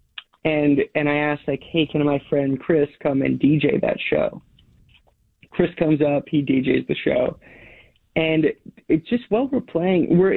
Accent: American